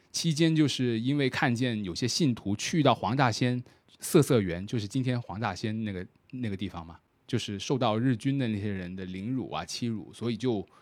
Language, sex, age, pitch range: Chinese, male, 20-39, 100-130 Hz